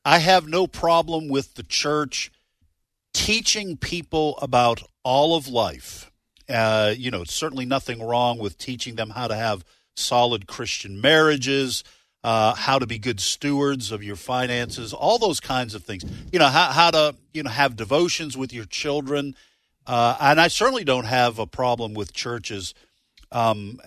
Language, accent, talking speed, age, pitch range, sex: English, American, 165 wpm, 50-69, 110-145 Hz, male